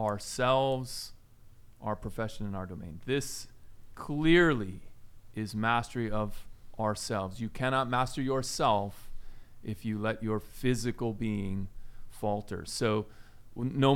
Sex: male